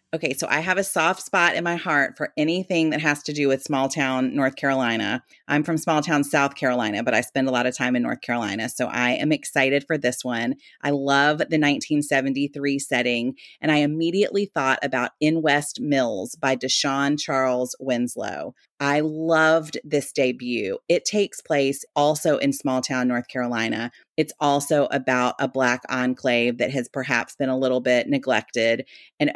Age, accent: 30-49, American